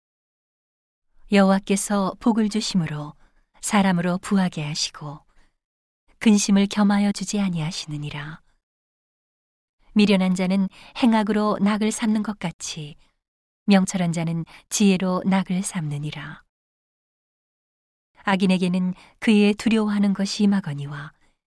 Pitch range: 170-205 Hz